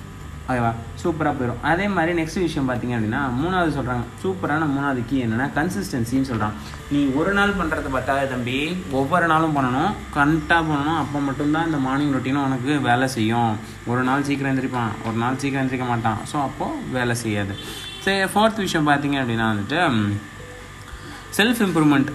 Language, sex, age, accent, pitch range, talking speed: Tamil, male, 20-39, native, 120-155 Hz, 150 wpm